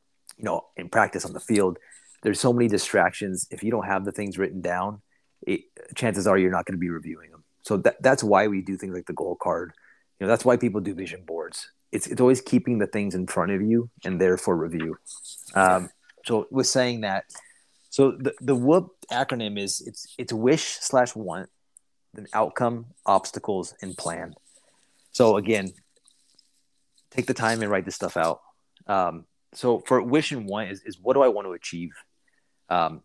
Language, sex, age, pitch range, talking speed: English, male, 30-49, 95-125 Hz, 190 wpm